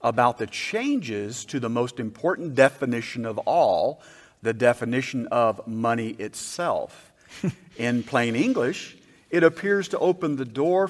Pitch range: 120-170 Hz